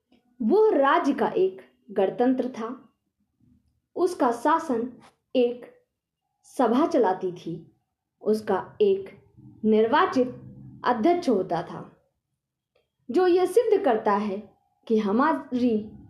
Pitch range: 195-285 Hz